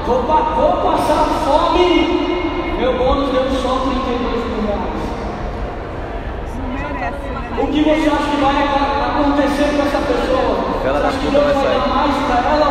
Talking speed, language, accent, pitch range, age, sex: 125 wpm, Portuguese, Brazilian, 265-290 Hz, 20-39, male